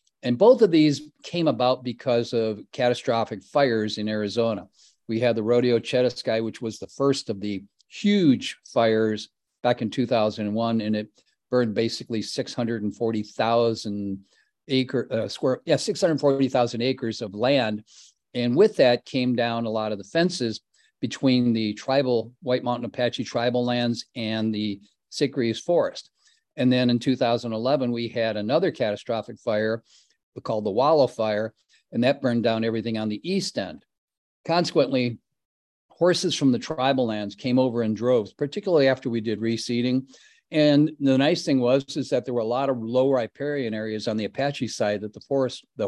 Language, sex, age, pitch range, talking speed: English, male, 50-69, 110-135 Hz, 160 wpm